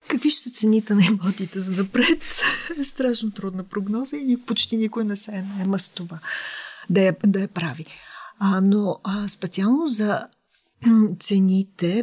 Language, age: Bulgarian, 40-59